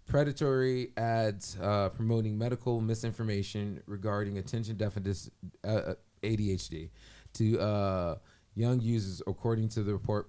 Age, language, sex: 20-39, English, male